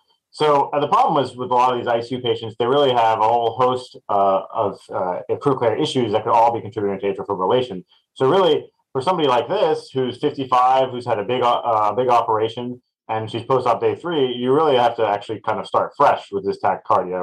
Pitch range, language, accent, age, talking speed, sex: 105-125 Hz, English, American, 30-49, 220 wpm, male